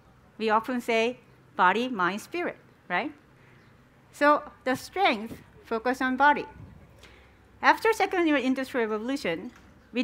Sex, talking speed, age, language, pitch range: female, 110 wpm, 50-69, English, 210-285 Hz